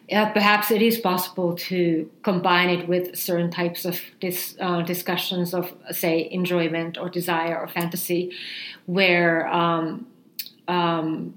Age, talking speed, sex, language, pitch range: 40-59, 125 wpm, female, English, 170-205 Hz